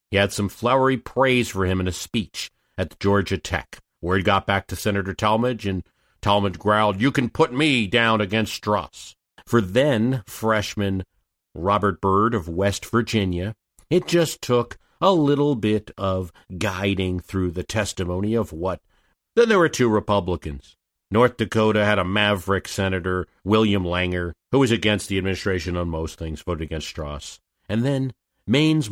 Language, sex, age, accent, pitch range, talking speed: English, male, 50-69, American, 90-115 Hz, 160 wpm